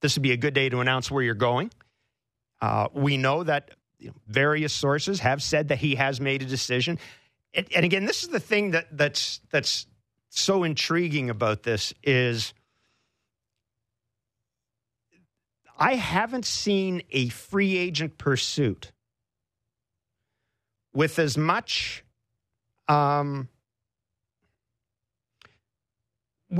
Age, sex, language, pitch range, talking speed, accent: 50-69, male, English, 110-145 Hz, 120 wpm, American